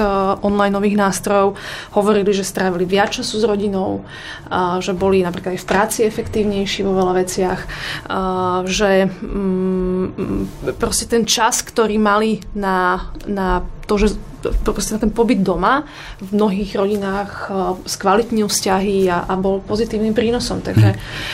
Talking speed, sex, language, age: 130 wpm, female, Slovak, 20-39